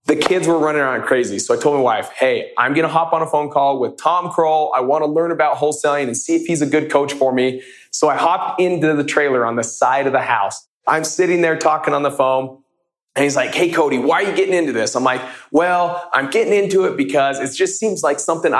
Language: English